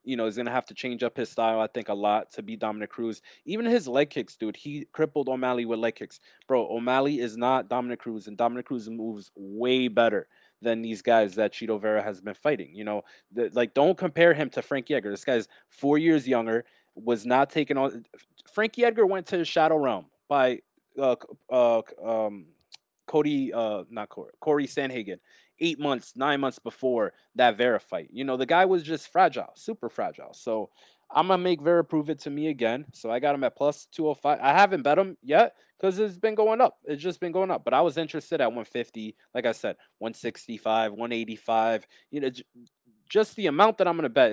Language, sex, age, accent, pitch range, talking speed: English, male, 20-39, American, 115-150 Hz, 215 wpm